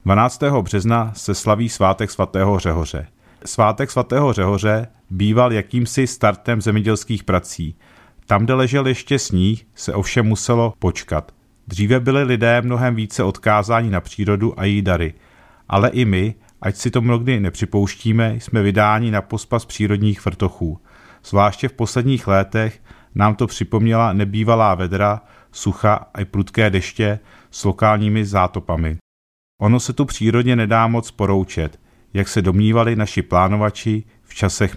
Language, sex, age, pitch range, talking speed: Czech, male, 40-59, 95-115 Hz, 140 wpm